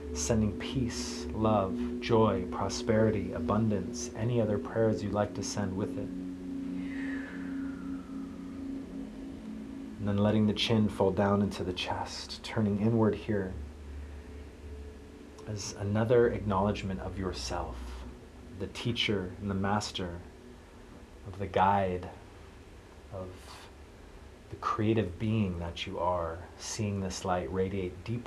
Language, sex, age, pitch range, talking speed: English, male, 30-49, 85-105 Hz, 110 wpm